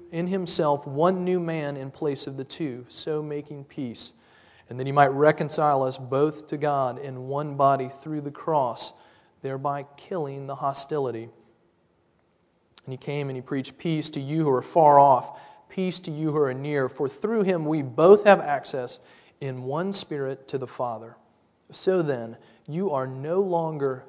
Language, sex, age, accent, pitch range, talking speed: English, male, 40-59, American, 130-160 Hz, 175 wpm